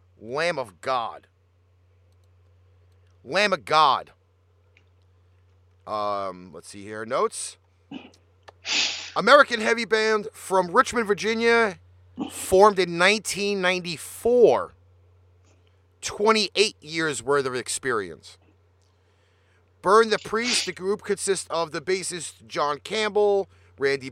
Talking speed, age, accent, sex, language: 90 wpm, 40-59, American, male, English